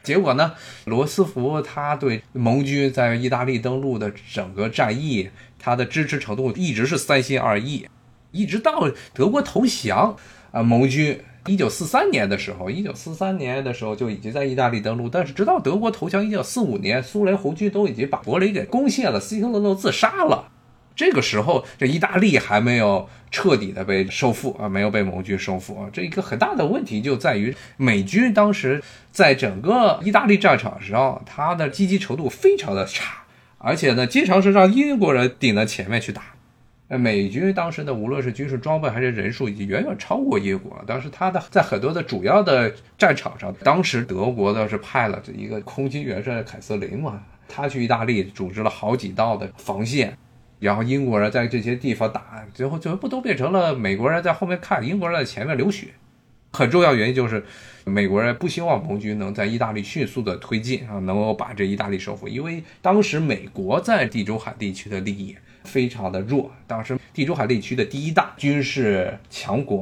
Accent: native